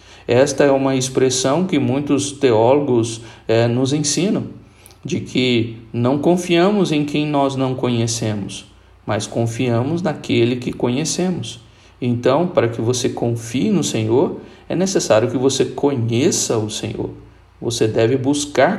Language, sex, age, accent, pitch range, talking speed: Portuguese, male, 50-69, Brazilian, 115-145 Hz, 130 wpm